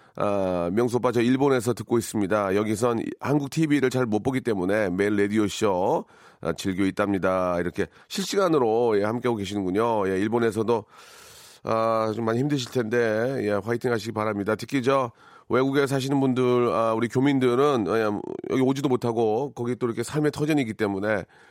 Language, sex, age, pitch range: Korean, male, 40-59, 110-145 Hz